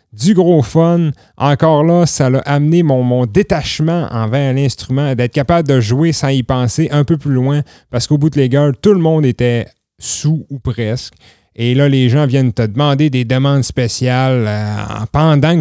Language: French